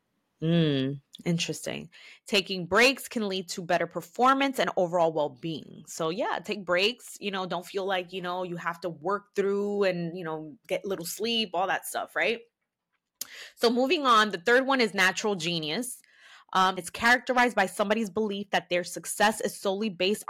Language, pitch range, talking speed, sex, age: English, 175-220 Hz, 175 wpm, female, 20-39